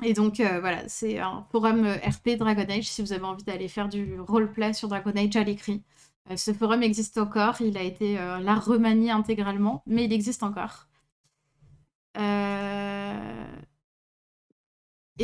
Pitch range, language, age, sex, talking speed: 185-225 Hz, French, 20-39, female, 160 wpm